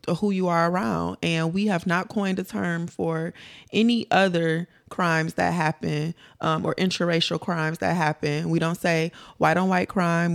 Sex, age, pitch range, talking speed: female, 20-39, 160-190 Hz, 175 wpm